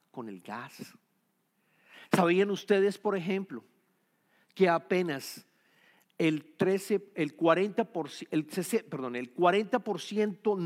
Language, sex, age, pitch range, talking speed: English, male, 50-69, 155-225 Hz, 90 wpm